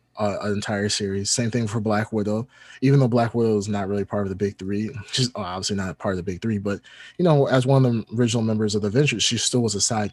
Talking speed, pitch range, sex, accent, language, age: 265 wpm, 105-130 Hz, male, American, English, 20-39